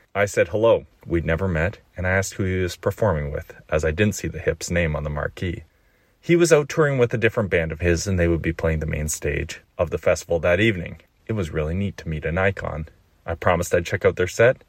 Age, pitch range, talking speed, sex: 30-49, 80-110 Hz, 255 wpm, male